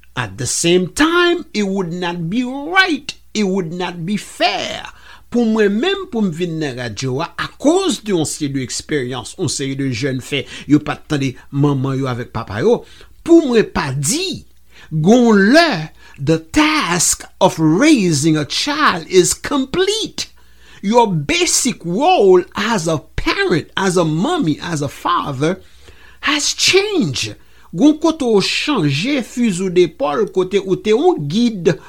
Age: 60-79